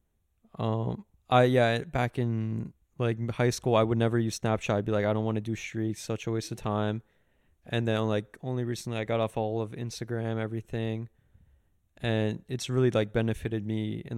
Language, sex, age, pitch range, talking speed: English, male, 20-39, 105-125 Hz, 195 wpm